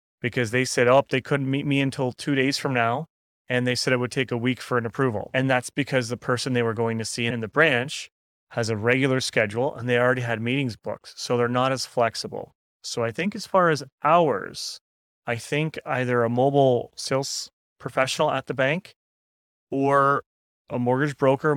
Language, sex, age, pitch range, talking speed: English, male, 30-49, 120-140 Hz, 205 wpm